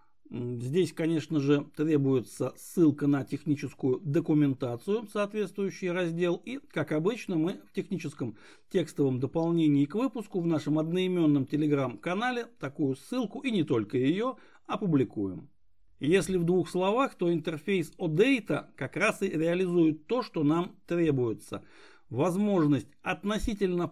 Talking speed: 120 wpm